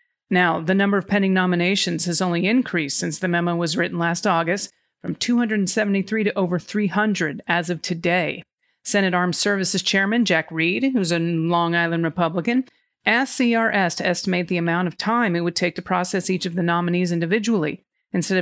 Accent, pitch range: American, 175-210 Hz